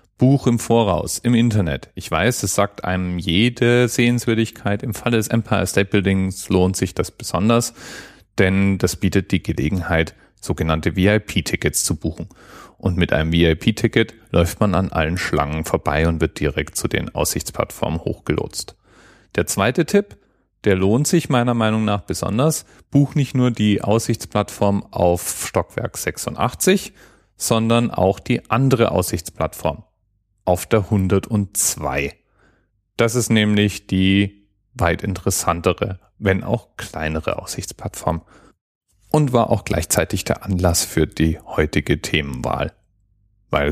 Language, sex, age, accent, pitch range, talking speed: German, male, 30-49, German, 90-115 Hz, 130 wpm